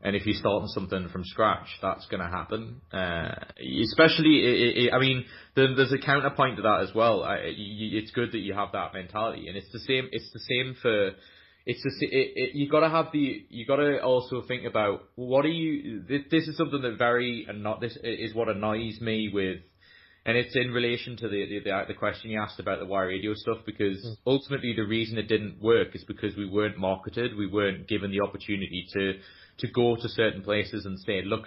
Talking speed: 225 wpm